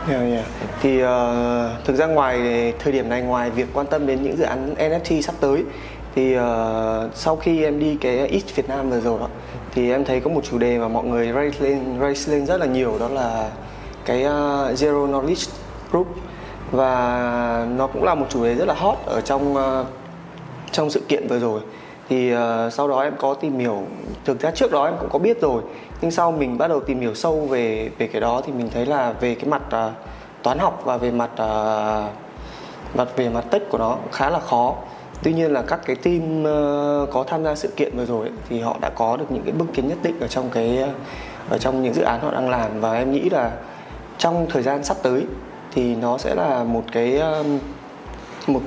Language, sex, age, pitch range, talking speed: Vietnamese, male, 20-39, 120-145 Hz, 220 wpm